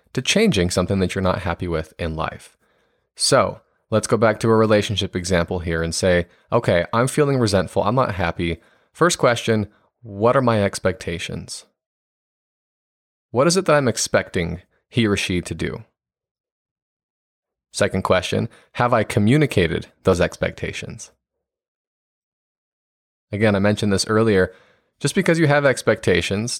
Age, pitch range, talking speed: 20-39, 90-115 Hz, 140 wpm